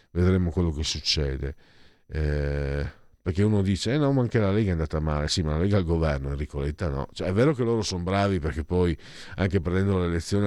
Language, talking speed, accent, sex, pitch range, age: Italian, 225 wpm, native, male, 85-125 Hz, 50-69